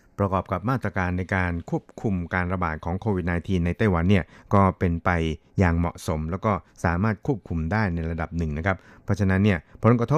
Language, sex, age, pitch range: Thai, male, 60-79, 90-105 Hz